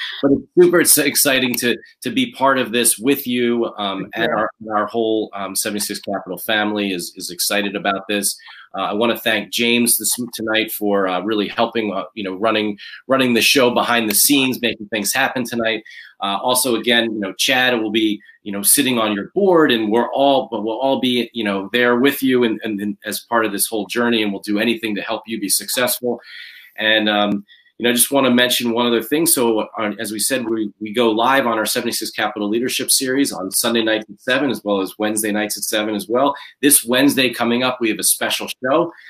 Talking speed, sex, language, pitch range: 220 wpm, male, English, 105-130 Hz